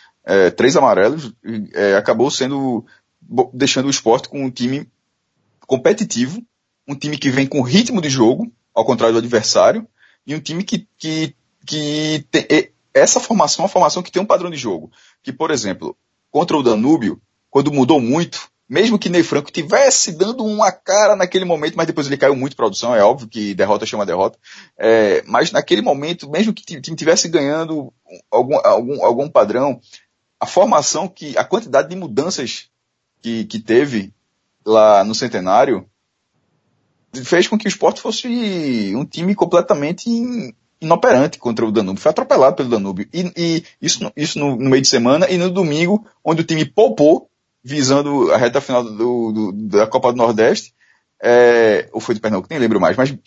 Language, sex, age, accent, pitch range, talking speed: Portuguese, male, 20-39, Brazilian, 130-185 Hz, 175 wpm